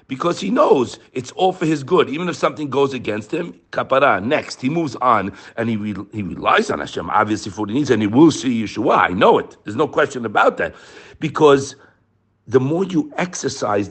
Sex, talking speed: male, 210 wpm